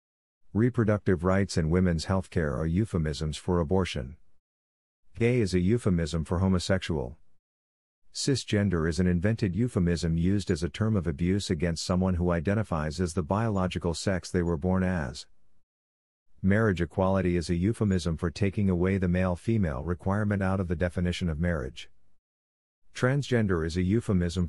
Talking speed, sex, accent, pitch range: 145 wpm, male, American, 85-100 Hz